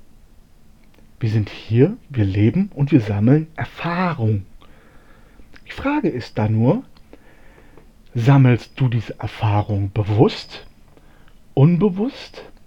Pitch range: 105-150 Hz